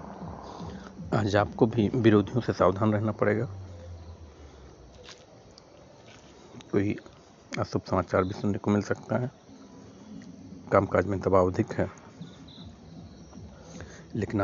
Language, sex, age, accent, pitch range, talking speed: Hindi, male, 60-79, native, 90-105 Hz, 100 wpm